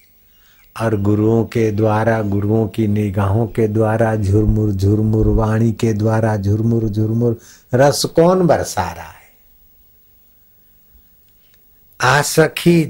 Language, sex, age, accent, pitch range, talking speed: Hindi, male, 60-79, native, 100-125 Hz, 100 wpm